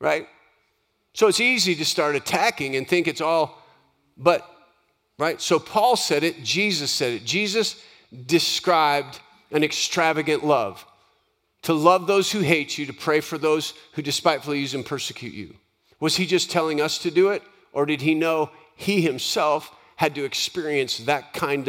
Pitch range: 150-190 Hz